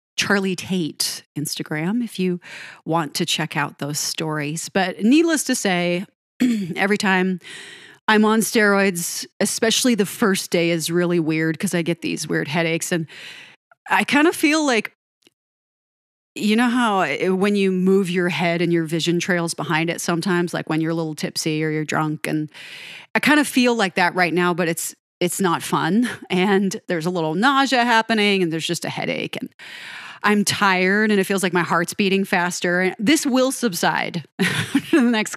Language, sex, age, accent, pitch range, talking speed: English, female, 30-49, American, 170-220 Hz, 180 wpm